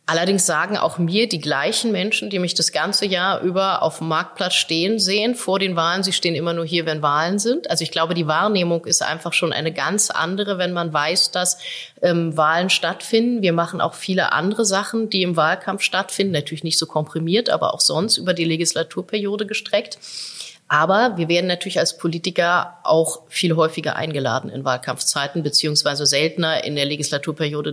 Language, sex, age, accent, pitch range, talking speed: German, female, 30-49, German, 155-185 Hz, 185 wpm